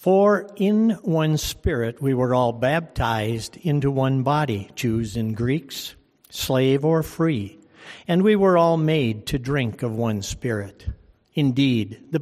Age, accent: 60-79, American